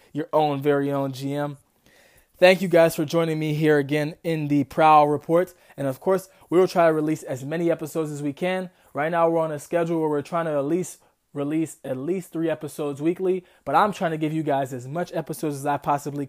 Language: English